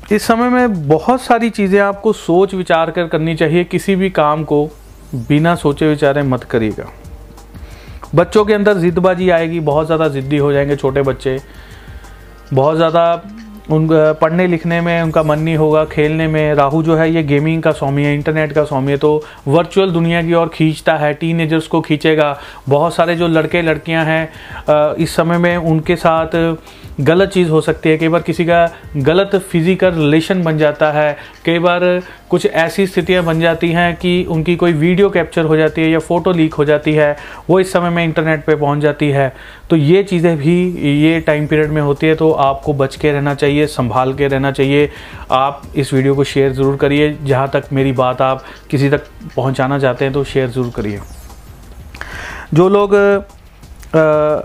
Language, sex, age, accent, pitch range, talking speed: Hindi, male, 30-49, native, 145-170 Hz, 185 wpm